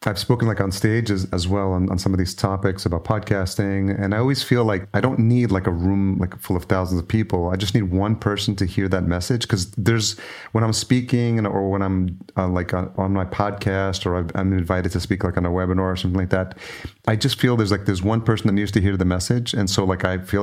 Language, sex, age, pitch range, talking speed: English, male, 30-49, 90-105 Hz, 260 wpm